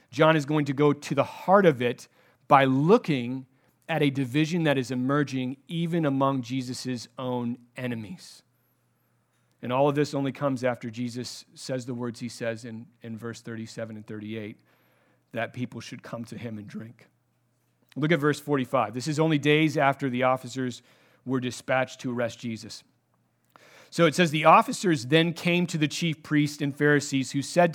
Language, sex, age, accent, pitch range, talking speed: English, male, 40-59, American, 125-155 Hz, 175 wpm